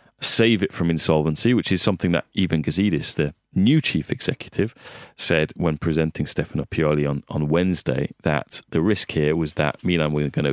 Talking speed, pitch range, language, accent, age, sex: 175 wpm, 80-95 Hz, English, British, 30-49, male